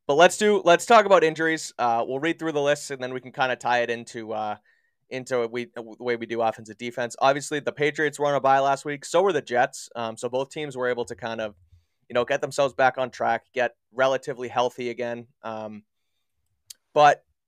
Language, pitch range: English, 115-150 Hz